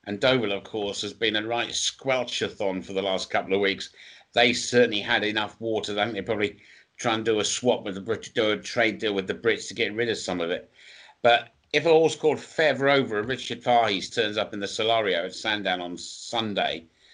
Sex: male